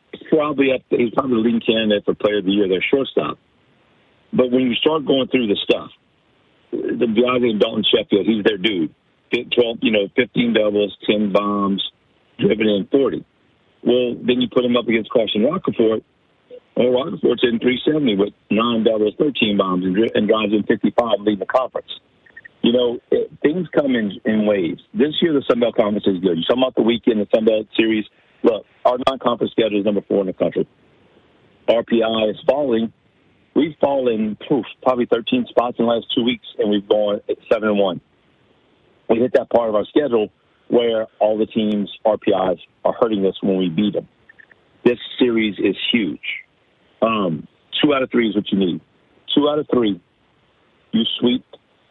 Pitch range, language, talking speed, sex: 105-125 Hz, English, 180 wpm, male